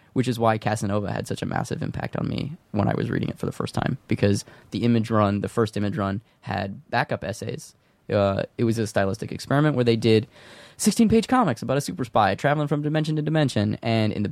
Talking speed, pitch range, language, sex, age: 225 wpm, 110-145 Hz, English, male, 20-39